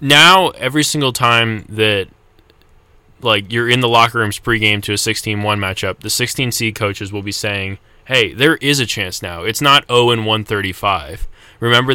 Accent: American